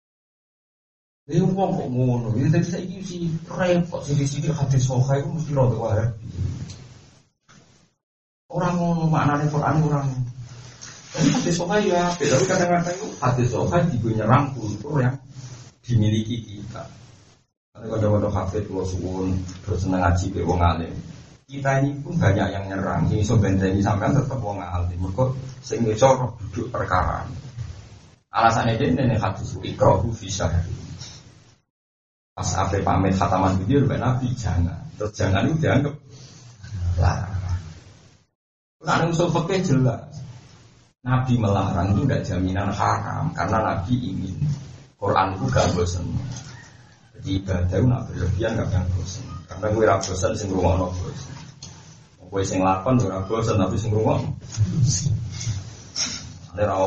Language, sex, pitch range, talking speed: Indonesian, male, 95-135 Hz, 100 wpm